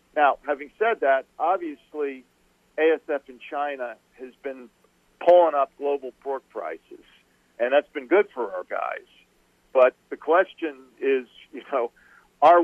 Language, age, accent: English, 50-69, American